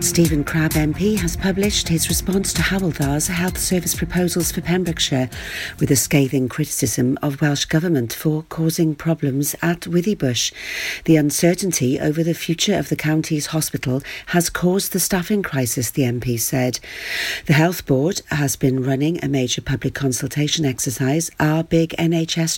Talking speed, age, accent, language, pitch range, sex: 150 wpm, 50-69, British, English, 140-175 Hz, female